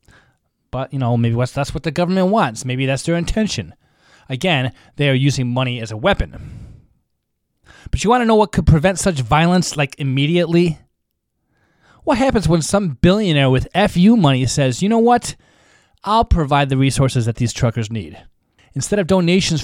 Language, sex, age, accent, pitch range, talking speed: English, male, 20-39, American, 135-185 Hz, 170 wpm